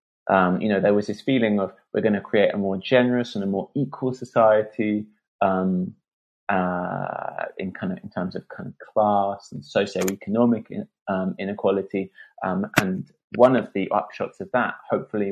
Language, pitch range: English, 95-115 Hz